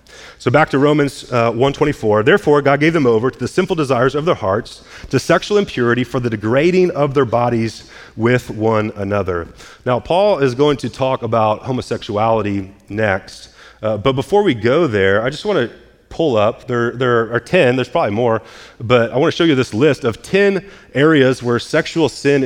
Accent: American